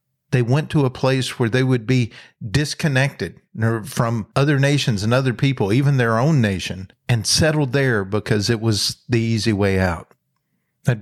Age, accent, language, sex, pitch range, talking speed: 50-69, American, English, male, 115-145 Hz, 170 wpm